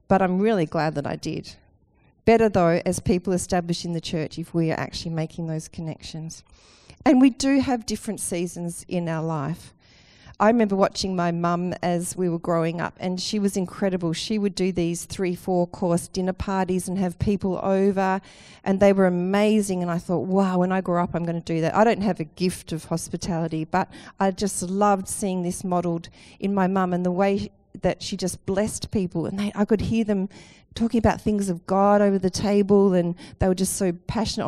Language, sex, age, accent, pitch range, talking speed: English, female, 40-59, Australian, 175-205 Hz, 205 wpm